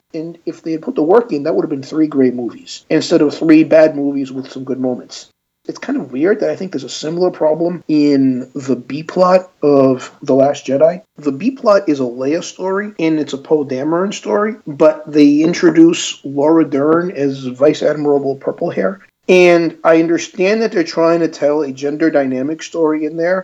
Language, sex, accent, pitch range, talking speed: English, male, American, 140-170 Hz, 195 wpm